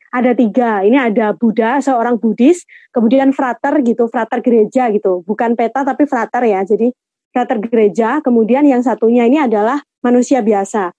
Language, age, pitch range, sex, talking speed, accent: Indonesian, 20-39, 215-260 Hz, female, 155 wpm, native